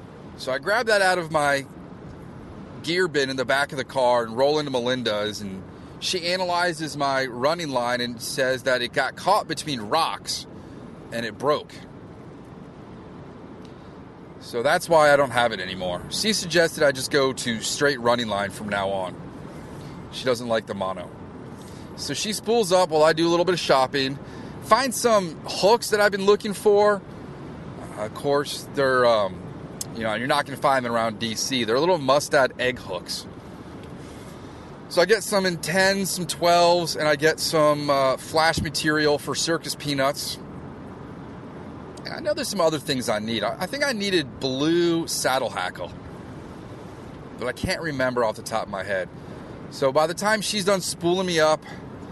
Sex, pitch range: male, 130-175 Hz